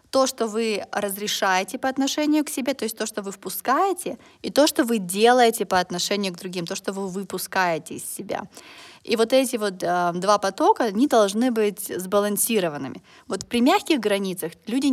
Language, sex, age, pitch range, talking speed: Russian, female, 20-39, 195-245 Hz, 180 wpm